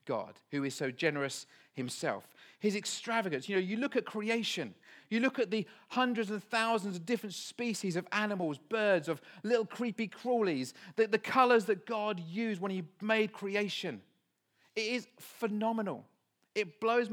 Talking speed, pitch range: 160 wpm, 180-220 Hz